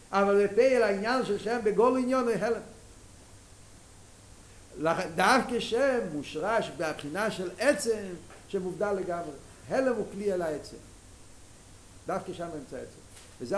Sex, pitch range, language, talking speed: male, 115-165 Hz, Hebrew, 135 wpm